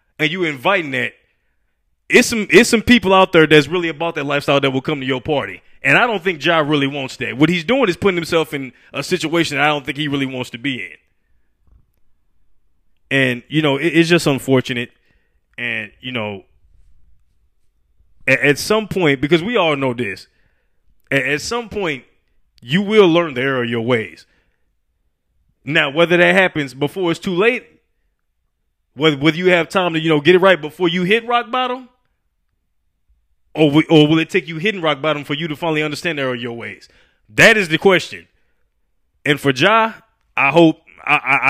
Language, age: English, 20-39